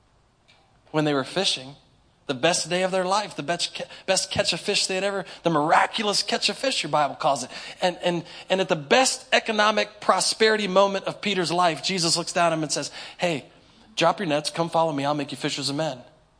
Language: English